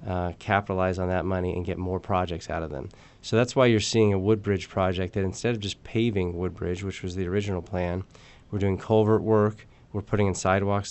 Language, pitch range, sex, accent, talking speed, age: English, 90-105 Hz, male, American, 215 wpm, 20-39